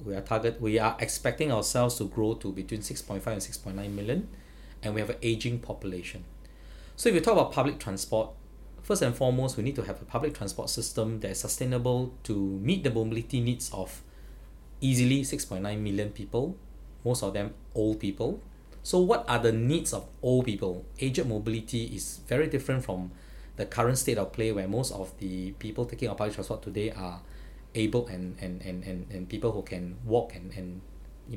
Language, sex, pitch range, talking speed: English, male, 95-125 Hz, 190 wpm